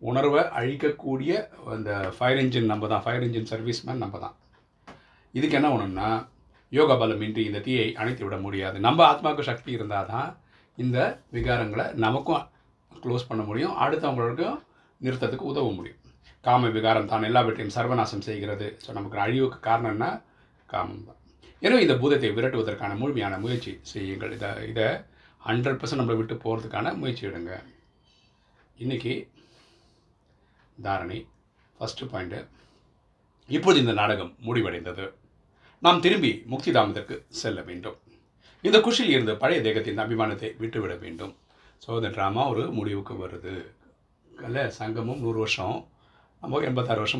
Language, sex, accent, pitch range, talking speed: Tamil, male, native, 105-125 Hz, 125 wpm